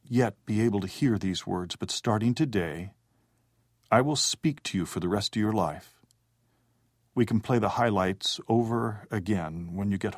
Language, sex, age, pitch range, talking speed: English, male, 50-69, 100-120 Hz, 185 wpm